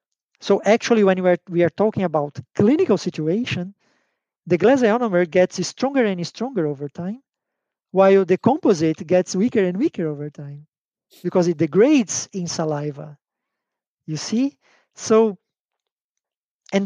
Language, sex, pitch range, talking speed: German, male, 160-205 Hz, 135 wpm